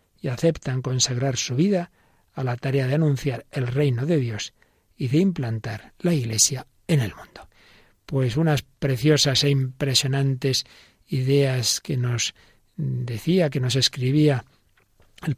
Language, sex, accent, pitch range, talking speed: Spanish, male, Spanish, 125-155 Hz, 135 wpm